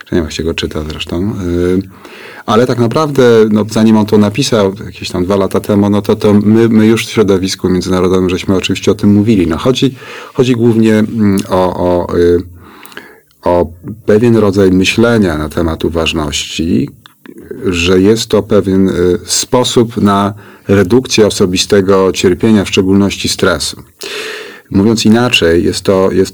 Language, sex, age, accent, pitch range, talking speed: Polish, male, 30-49, native, 90-110 Hz, 145 wpm